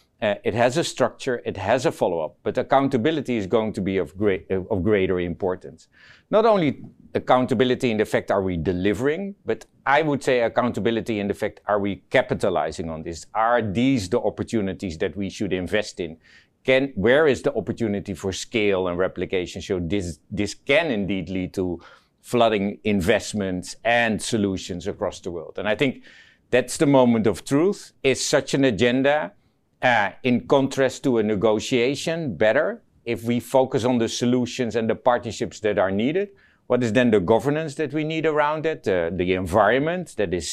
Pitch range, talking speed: 105-135 Hz, 180 wpm